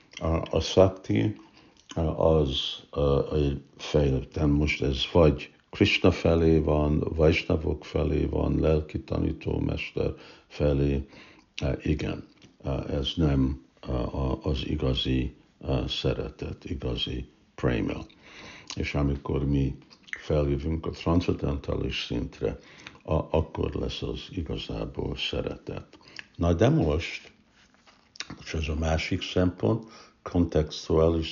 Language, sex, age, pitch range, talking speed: Hungarian, male, 60-79, 75-85 Hz, 85 wpm